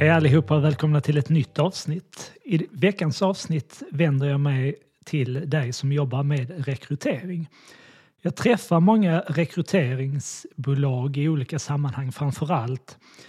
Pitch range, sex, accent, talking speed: 135-170 Hz, male, native, 125 wpm